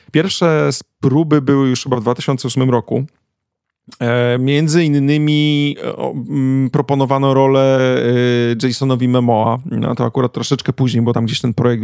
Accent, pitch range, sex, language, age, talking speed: native, 125-155 Hz, male, Polish, 40-59, 140 wpm